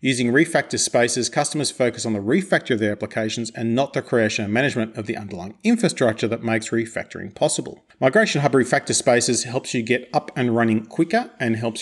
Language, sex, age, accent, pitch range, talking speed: English, male, 40-59, Australian, 110-140 Hz, 195 wpm